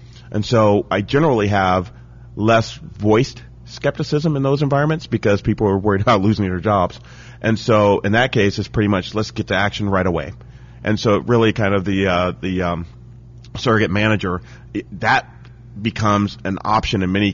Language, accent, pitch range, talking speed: English, American, 95-120 Hz, 175 wpm